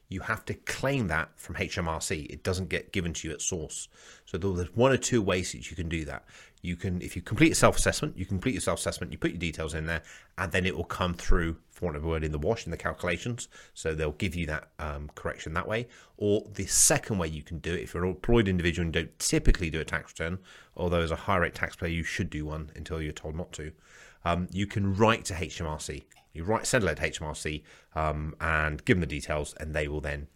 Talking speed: 245 wpm